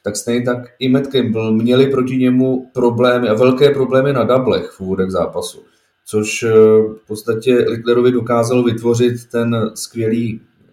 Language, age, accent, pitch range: Czech, 30-49, native, 105-120 Hz